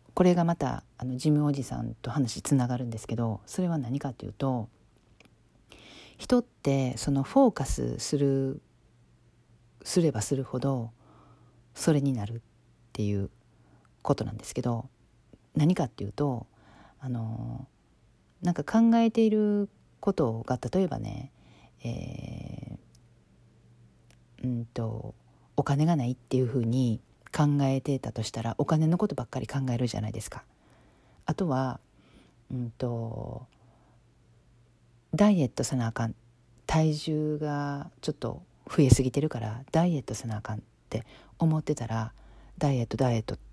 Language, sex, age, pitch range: Japanese, female, 40-59, 115-145 Hz